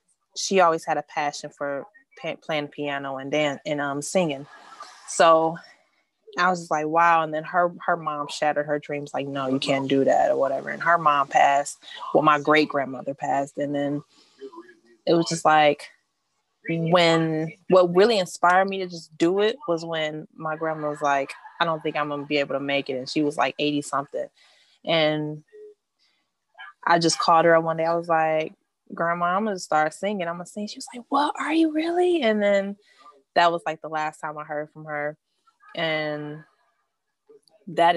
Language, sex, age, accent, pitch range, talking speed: English, female, 20-39, American, 150-175 Hz, 190 wpm